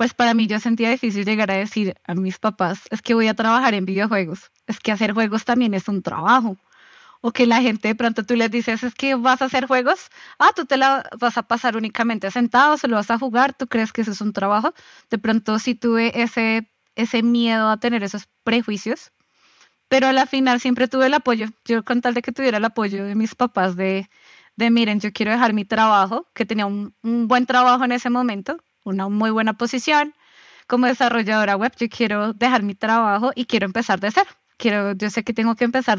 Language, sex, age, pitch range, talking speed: Spanish, female, 20-39, 210-245 Hz, 220 wpm